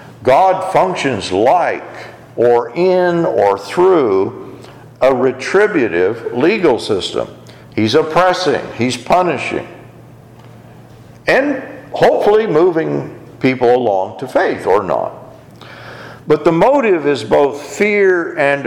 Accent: American